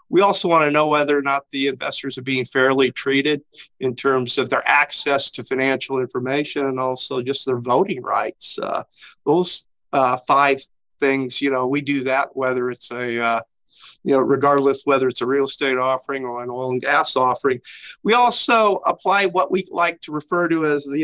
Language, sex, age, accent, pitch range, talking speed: English, male, 50-69, American, 130-150 Hz, 195 wpm